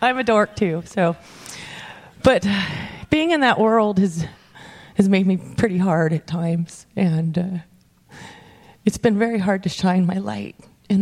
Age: 30-49